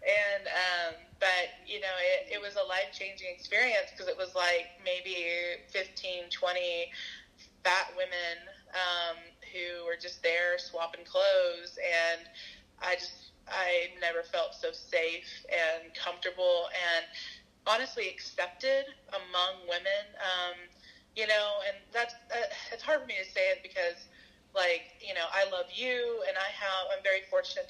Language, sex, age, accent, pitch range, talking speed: English, female, 20-39, American, 175-230 Hz, 145 wpm